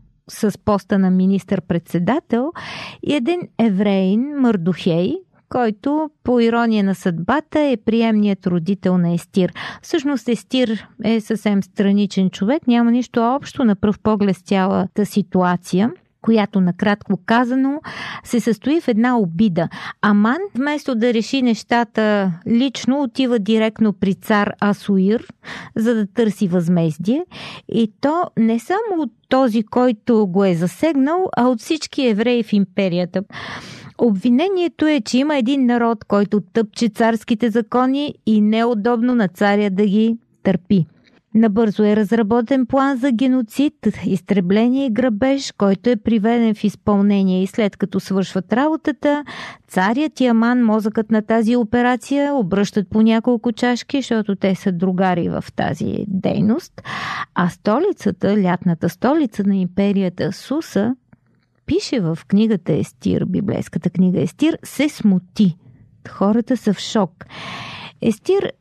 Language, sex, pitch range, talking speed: Bulgarian, female, 195-250 Hz, 130 wpm